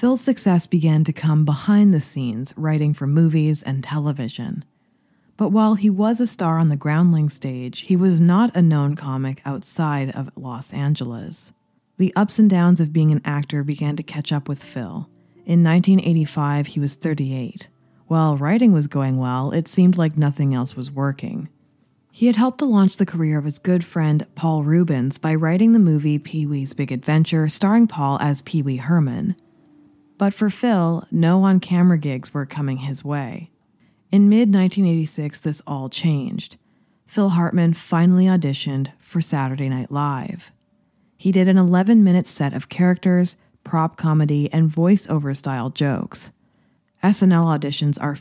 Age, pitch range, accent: 20-39, 145-185 Hz, American